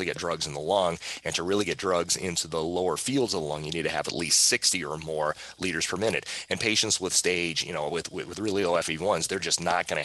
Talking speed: 280 wpm